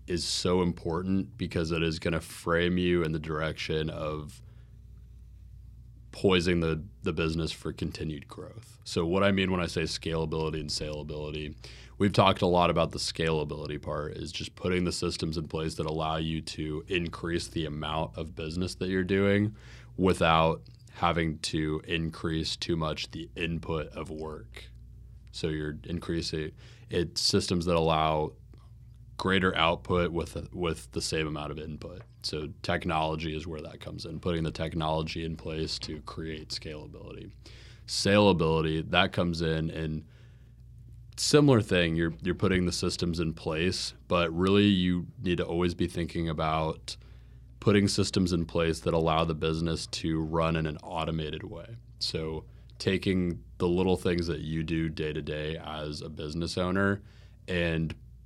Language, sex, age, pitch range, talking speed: English, male, 20-39, 80-95 Hz, 155 wpm